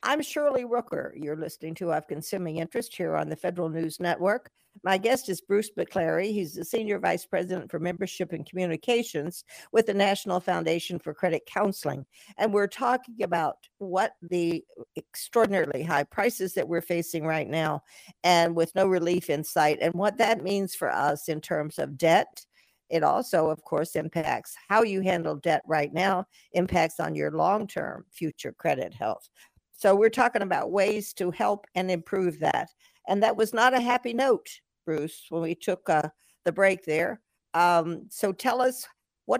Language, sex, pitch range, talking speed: English, female, 165-210 Hz, 175 wpm